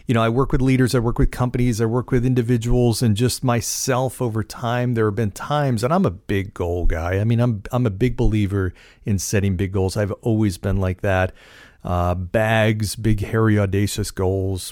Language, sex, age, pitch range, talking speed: English, male, 40-59, 100-125 Hz, 210 wpm